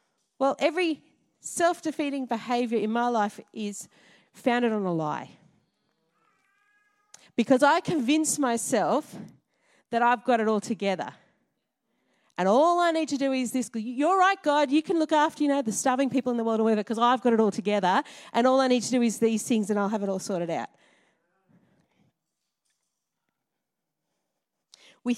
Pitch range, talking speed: 210-280 Hz, 165 wpm